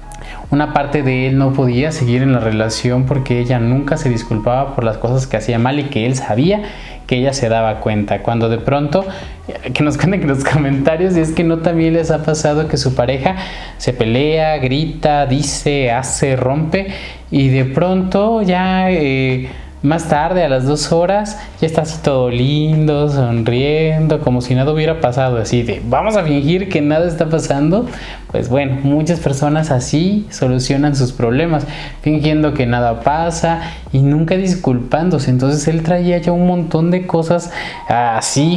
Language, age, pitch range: Spanish, 20-39, 130-160 Hz